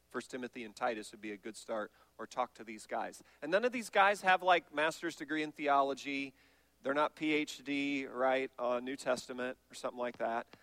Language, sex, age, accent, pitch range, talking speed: English, male, 40-59, American, 125-190 Hz, 205 wpm